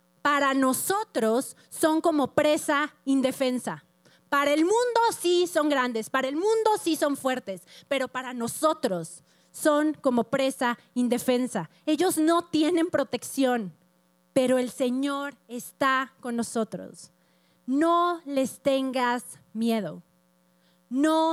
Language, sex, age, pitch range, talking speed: Spanish, female, 30-49, 220-295 Hz, 115 wpm